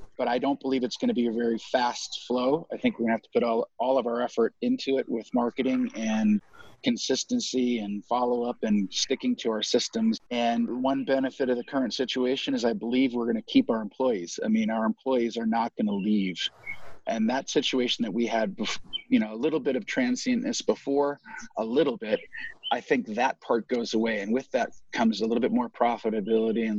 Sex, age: male, 40-59